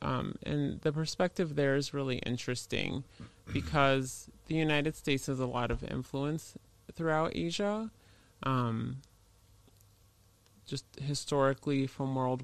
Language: English